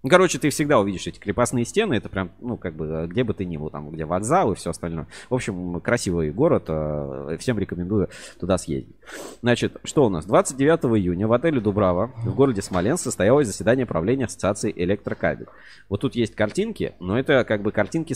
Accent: native